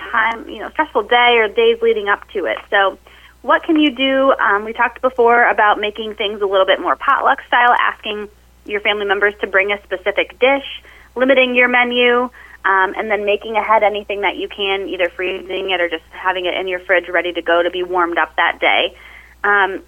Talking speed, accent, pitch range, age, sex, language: 210 wpm, American, 195-255 Hz, 20-39, female, English